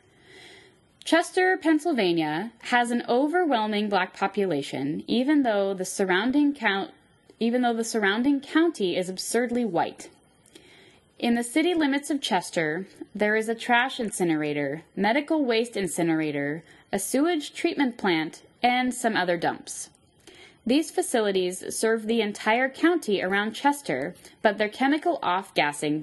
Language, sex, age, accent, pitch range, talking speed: English, female, 10-29, American, 185-265 Hz, 125 wpm